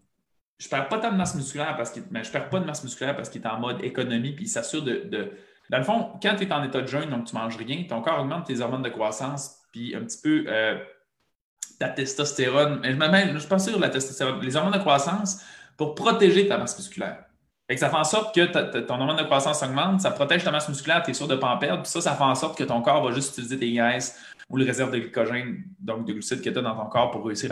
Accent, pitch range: Canadian, 125-175 Hz